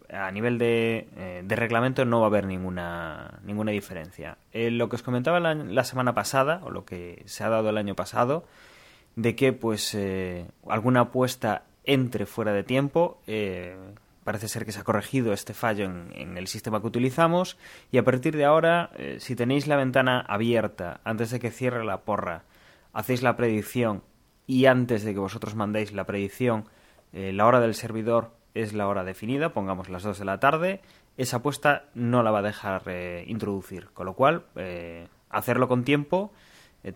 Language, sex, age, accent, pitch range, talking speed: Spanish, male, 20-39, Spanish, 100-125 Hz, 190 wpm